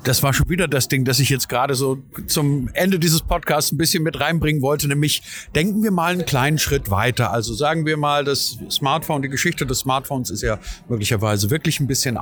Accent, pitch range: German, 125-160 Hz